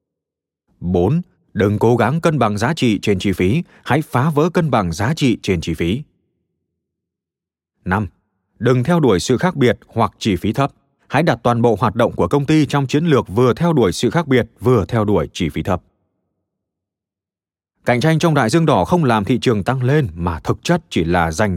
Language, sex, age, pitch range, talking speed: Vietnamese, male, 20-39, 95-130 Hz, 205 wpm